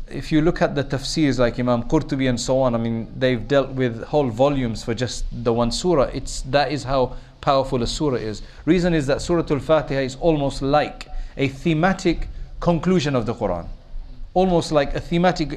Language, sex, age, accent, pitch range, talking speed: English, male, 40-59, South African, 130-175 Hz, 195 wpm